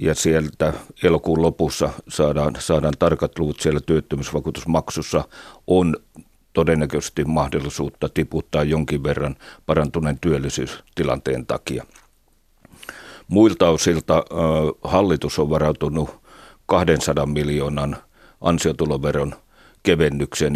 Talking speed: 85 wpm